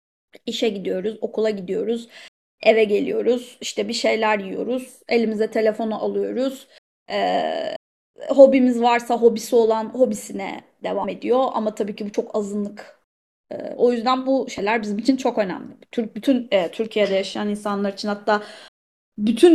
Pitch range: 215-275 Hz